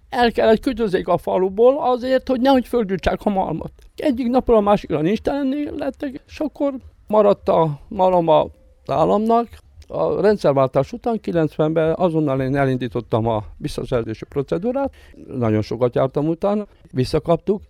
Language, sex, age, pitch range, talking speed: Hungarian, male, 60-79, 120-195 Hz, 130 wpm